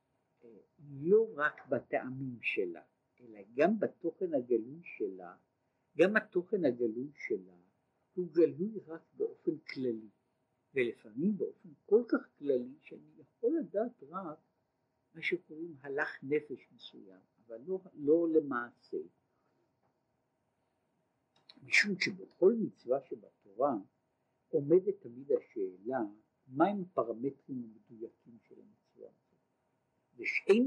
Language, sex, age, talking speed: Hebrew, male, 60-79, 95 wpm